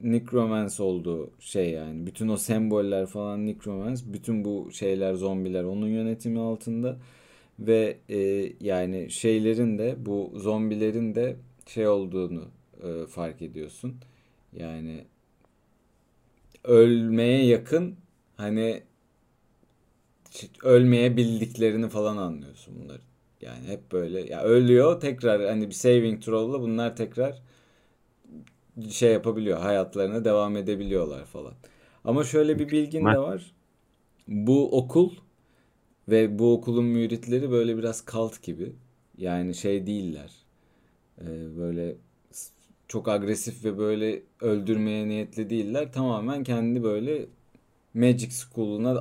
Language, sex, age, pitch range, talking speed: Turkish, male, 40-59, 100-120 Hz, 110 wpm